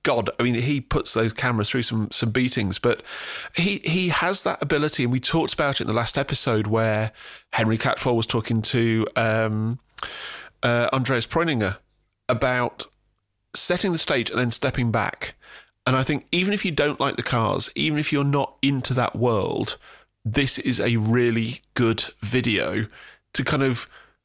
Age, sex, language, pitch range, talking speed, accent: 30-49, male, English, 110-145 Hz, 175 wpm, British